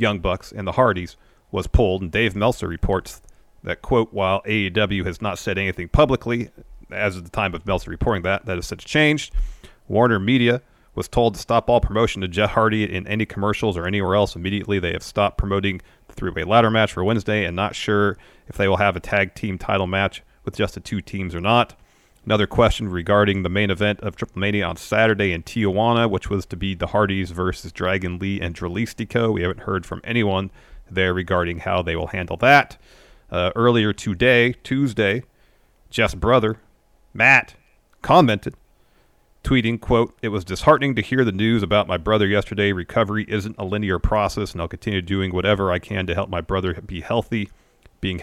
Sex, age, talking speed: male, 40-59, 190 wpm